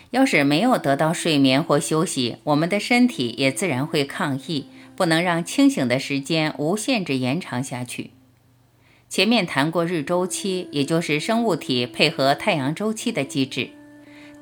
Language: Chinese